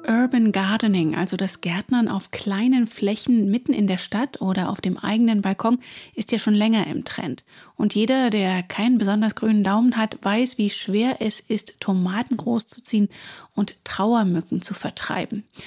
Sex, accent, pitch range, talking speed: female, German, 205-250 Hz, 160 wpm